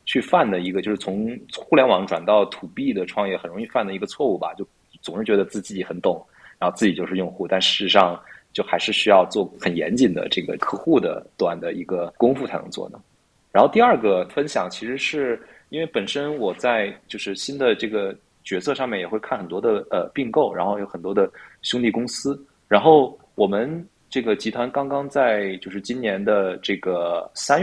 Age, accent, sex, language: 20-39, native, male, Chinese